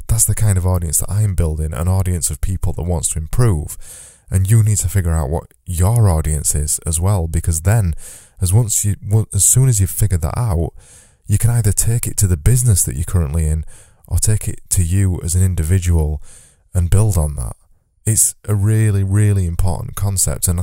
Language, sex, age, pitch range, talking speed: English, male, 20-39, 85-105 Hz, 205 wpm